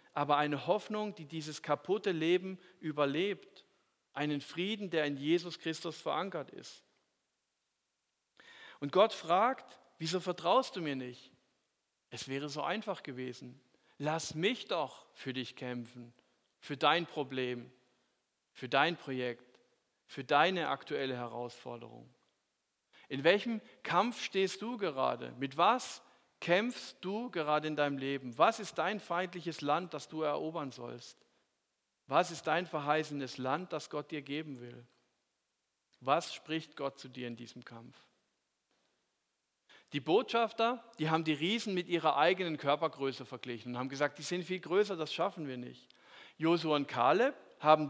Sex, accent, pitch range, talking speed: male, German, 130-180 Hz, 140 wpm